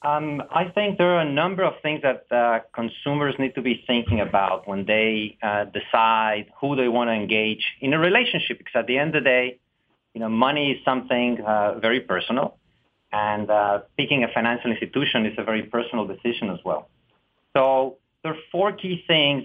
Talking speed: 190 wpm